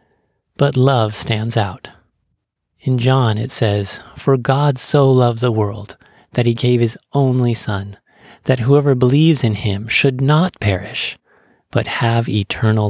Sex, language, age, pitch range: male, English, 40-59, 105-125 Hz